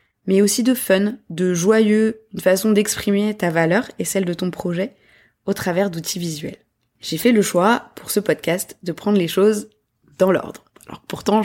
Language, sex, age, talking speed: French, female, 20-39, 185 wpm